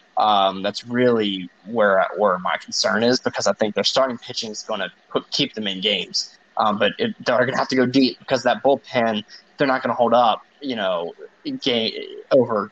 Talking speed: 210 wpm